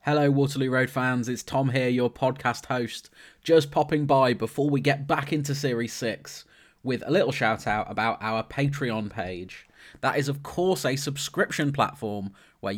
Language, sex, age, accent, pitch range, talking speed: English, male, 20-39, British, 120-150 Hz, 175 wpm